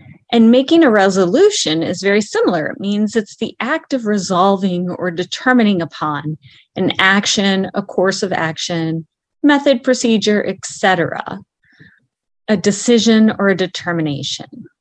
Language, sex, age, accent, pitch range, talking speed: English, female, 30-49, American, 175-235 Hz, 130 wpm